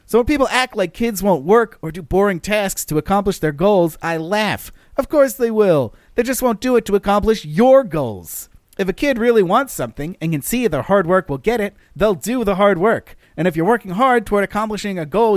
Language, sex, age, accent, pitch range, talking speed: English, male, 40-59, American, 150-225 Hz, 235 wpm